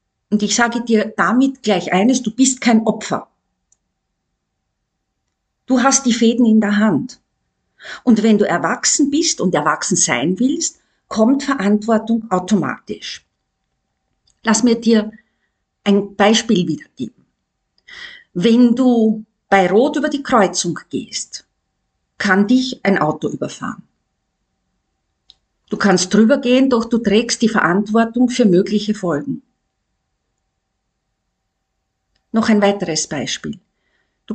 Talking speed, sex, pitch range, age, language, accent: 115 wpm, female, 200-250 Hz, 50-69, German, Austrian